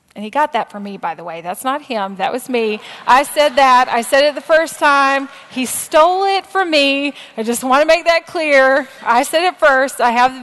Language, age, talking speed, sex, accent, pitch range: English, 30-49, 250 wpm, female, American, 210-275 Hz